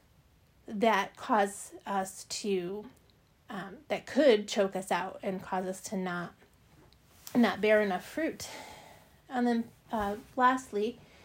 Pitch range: 190-220 Hz